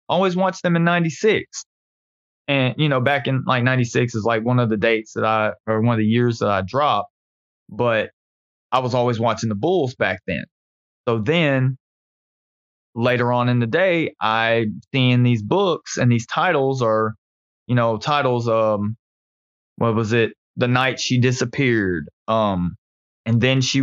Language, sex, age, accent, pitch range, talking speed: English, male, 20-39, American, 110-130 Hz, 170 wpm